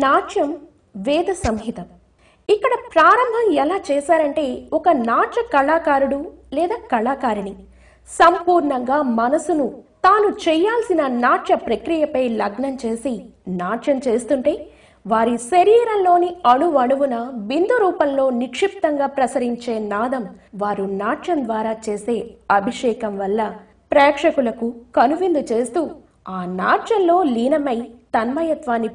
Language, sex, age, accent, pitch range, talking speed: Telugu, female, 20-39, native, 230-340 Hz, 90 wpm